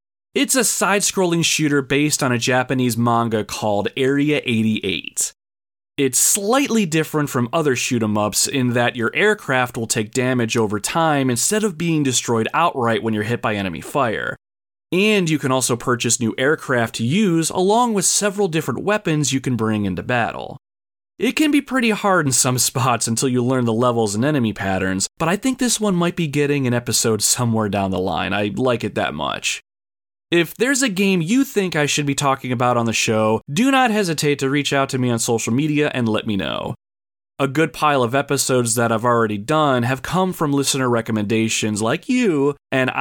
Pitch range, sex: 110-165 Hz, male